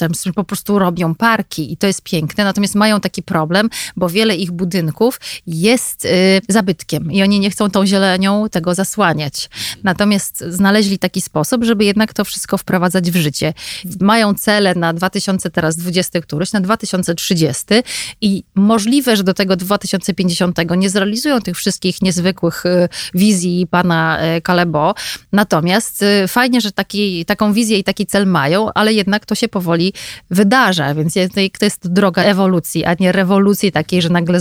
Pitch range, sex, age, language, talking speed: 175-210 Hz, female, 30-49, Polish, 150 wpm